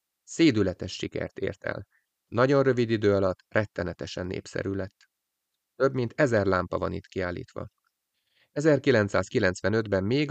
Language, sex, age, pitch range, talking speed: Hungarian, male, 30-49, 95-115 Hz, 115 wpm